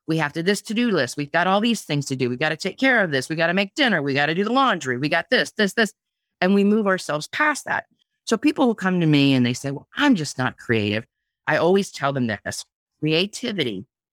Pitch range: 135-185 Hz